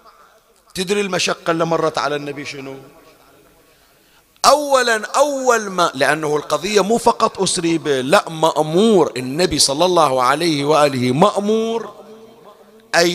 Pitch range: 150-205 Hz